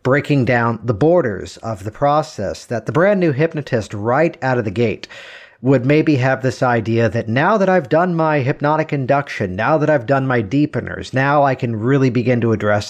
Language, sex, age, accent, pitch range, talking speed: English, male, 50-69, American, 120-155 Hz, 200 wpm